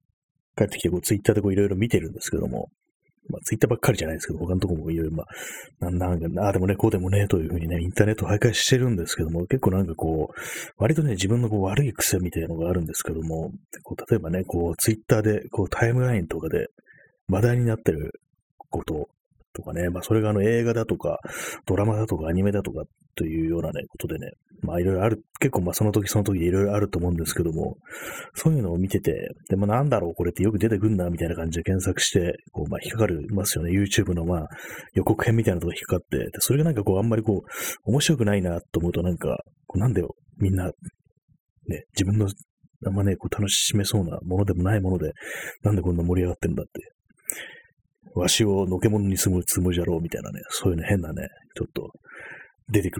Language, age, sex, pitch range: Japanese, 30-49, male, 85-110 Hz